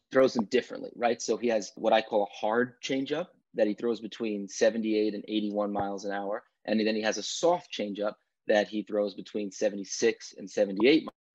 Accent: American